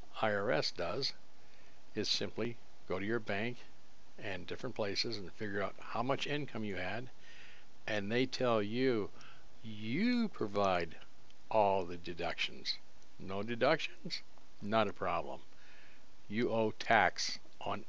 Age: 60-79